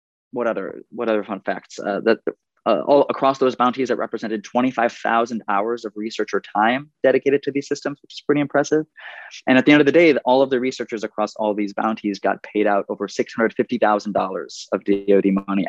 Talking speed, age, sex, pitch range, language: 200 wpm, 20-39, male, 105-120 Hz, English